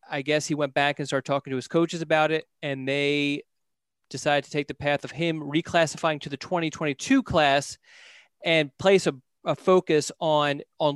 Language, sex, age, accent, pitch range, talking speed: English, male, 30-49, American, 145-175 Hz, 185 wpm